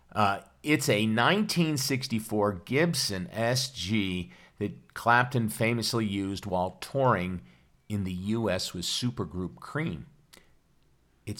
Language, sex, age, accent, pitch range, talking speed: English, male, 50-69, American, 95-140 Hz, 100 wpm